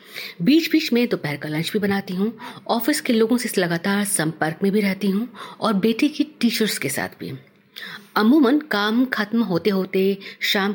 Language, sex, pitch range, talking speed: Hindi, female, 170-230 Hz, 185 wpm